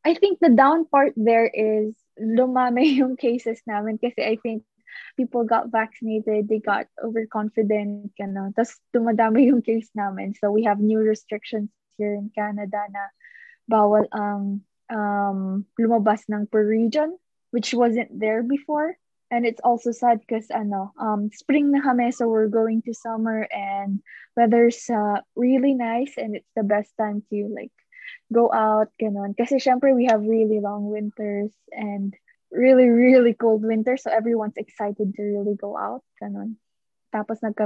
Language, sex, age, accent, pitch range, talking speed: English, female, 20-39, Filipino, 215-260 Hz, 150 wpm